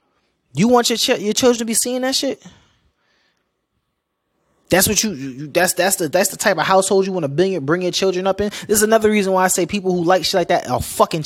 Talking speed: 255 wpm